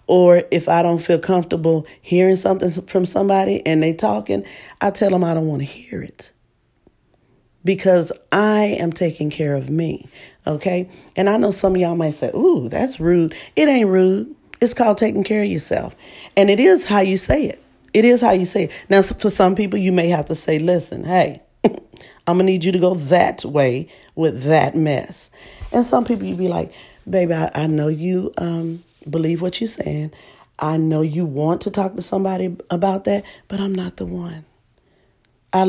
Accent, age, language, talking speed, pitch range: American, 40-59, English, 195 wpm, 150-195 Hz